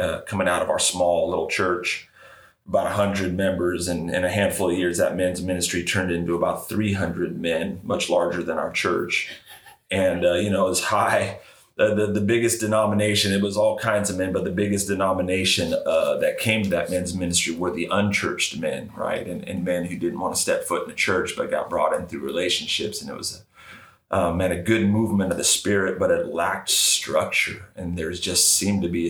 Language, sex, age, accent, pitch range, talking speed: English, male, 30-49, American, 90-105 Hz, 215 wpm